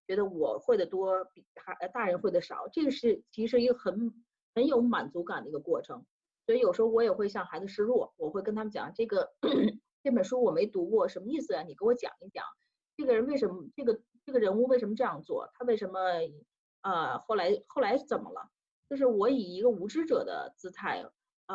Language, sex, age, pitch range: Chinese, female, 30-49, 180-250 Hz